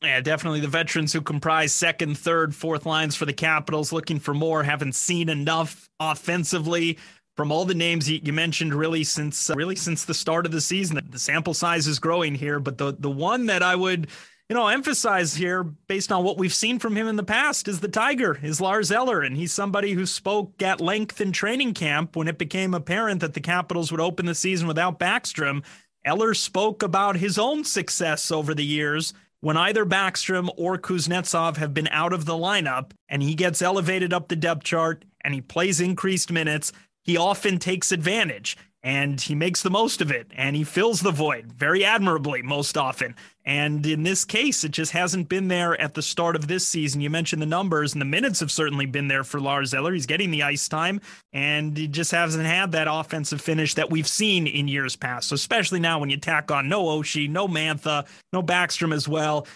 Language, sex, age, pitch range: English, male, 30-49, 150-185 Hz